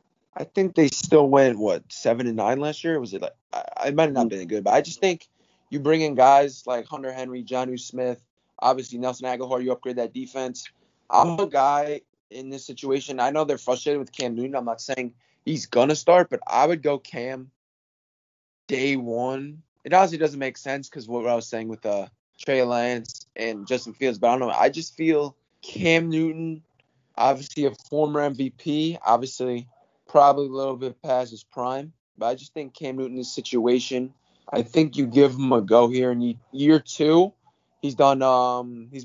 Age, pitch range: 20-39, 125-140 Hz